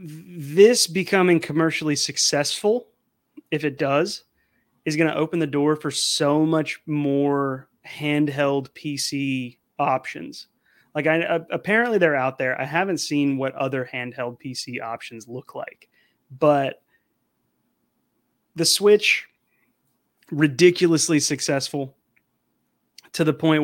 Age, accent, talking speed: 30-49, American, 110 wpm